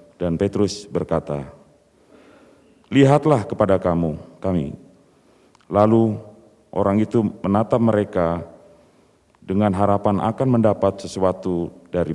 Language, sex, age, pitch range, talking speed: Indonesian, male, 40-59, 90-110 Hz, 90 wpm